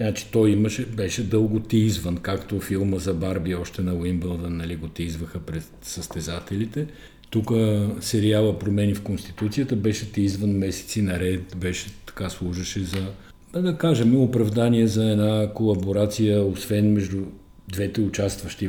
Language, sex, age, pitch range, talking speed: Bulgarian, male, 50-69, 90-110 Hz, 135 wpm